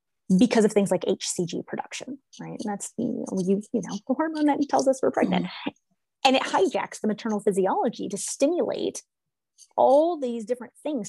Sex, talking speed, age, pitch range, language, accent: female, 170 wpm, 30-49, 195-260 Hz, English, American